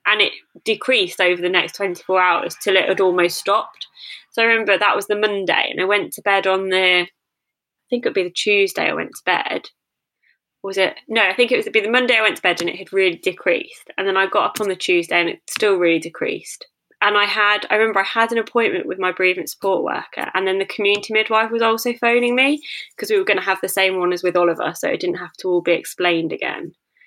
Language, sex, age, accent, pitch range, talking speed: English, female, 20-39, British, 185-225 Hz, 255 wpm